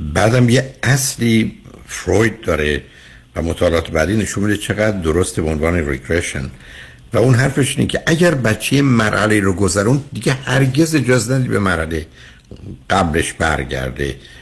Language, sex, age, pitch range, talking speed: Persian, male, 60-79, 85-125 Hz, 135 wpm